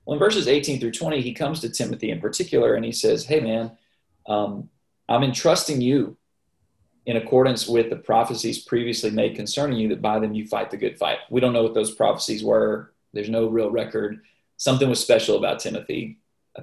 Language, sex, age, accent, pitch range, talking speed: English, male, 30-49, American, 110-135 Hz, 200 wpm